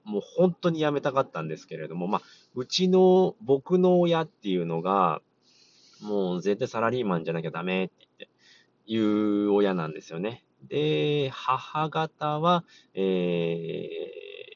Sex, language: male, Japanese